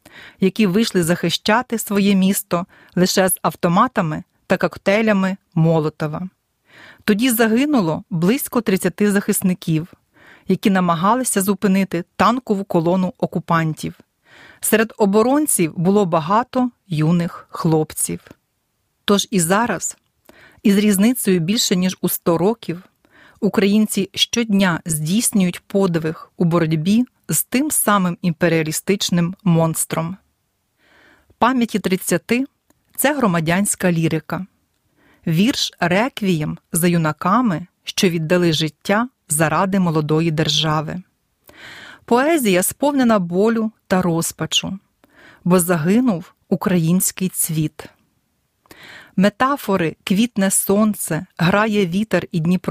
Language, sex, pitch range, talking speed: Ukrainian, female, 170-215 Hz, 90 wpm